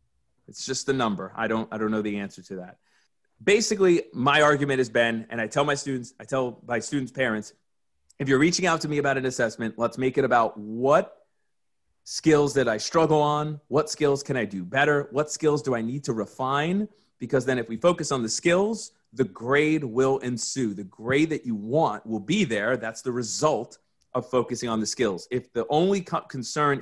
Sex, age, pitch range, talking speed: male, 30-49, 115-150 Hz, 205 wpm